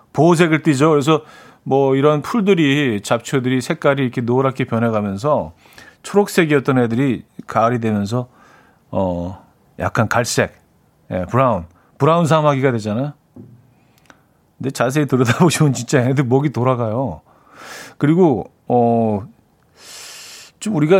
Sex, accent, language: male, native, Korean